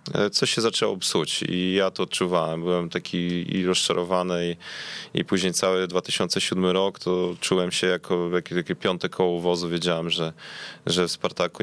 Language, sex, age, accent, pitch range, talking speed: English, male, 20-39, Polish, 85-95 Hz, 160 wpm